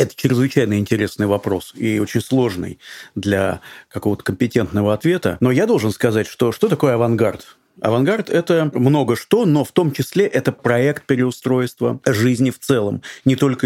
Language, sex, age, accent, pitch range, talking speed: Russian, male, 40-59, native, 115-150 Hz, 160 wpm